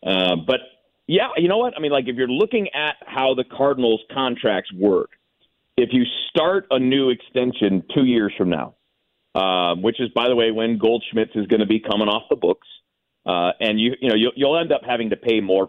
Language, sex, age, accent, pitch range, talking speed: English, male, 40-59, American, 105-140 Hz, 220 wpm